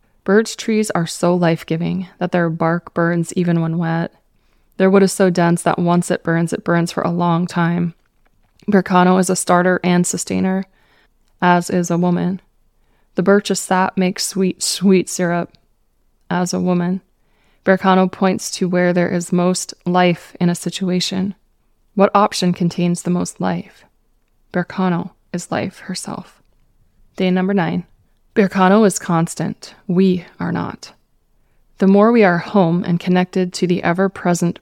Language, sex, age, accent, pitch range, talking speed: English, female, 20-39, American, 175-190 Hz, 155 wpm